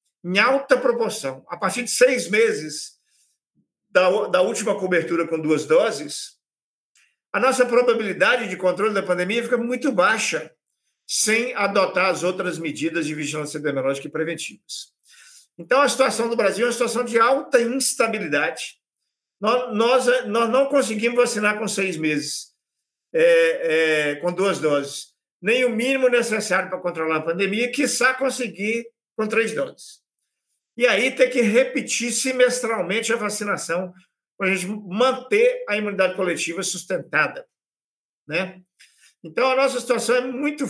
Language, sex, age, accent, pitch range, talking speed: Portuguese, male, 50-69, Brazilian, 185-250 Hz, 135 wpm